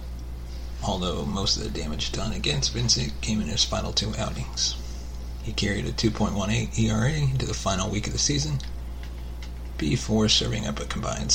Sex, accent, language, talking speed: male, American, English, 165 wpm